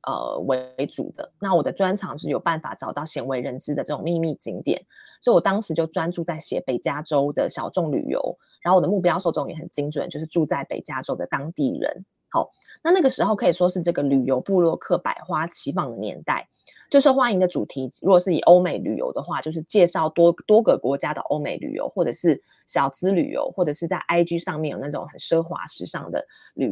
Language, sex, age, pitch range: Chinese, female, 20-39, 155-185 Hz